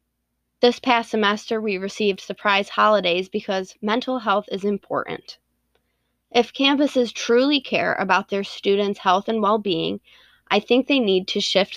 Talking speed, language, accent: 145 wpm, English, American